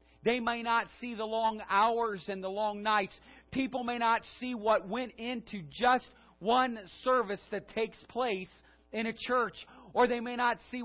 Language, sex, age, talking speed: English, male, 40-59, 175 wpm